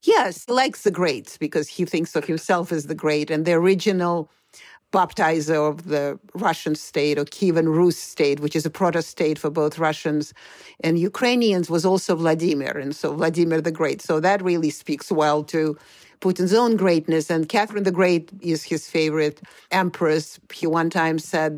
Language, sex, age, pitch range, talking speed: English, female, 50-69, 155-185 Hz, 175 wpm